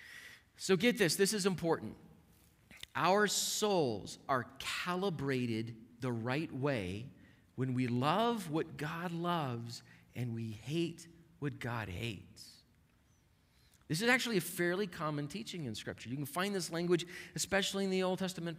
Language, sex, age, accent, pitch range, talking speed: English, male, 40-59, American, 110-170 Hz, 140 wpm